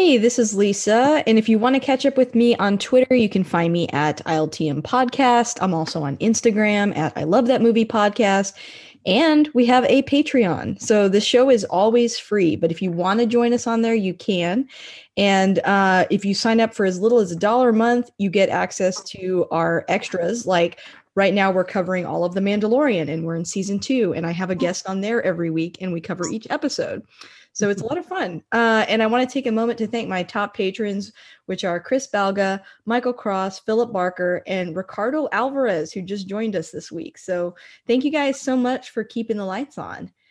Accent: American